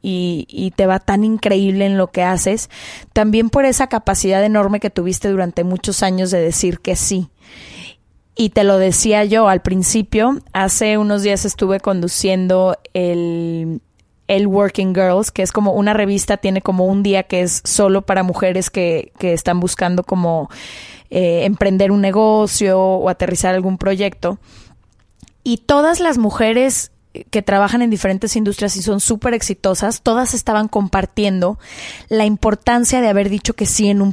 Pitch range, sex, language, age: 190-225 Hz, female, Spanish, 20-39